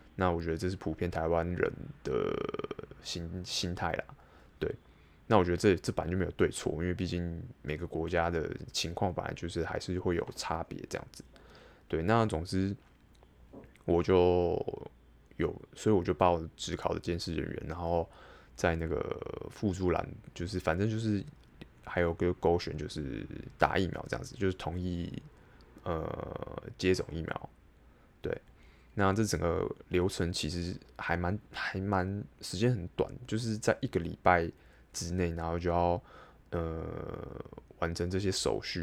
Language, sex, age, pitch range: Chinese, male, 20-39, 80-95 Hz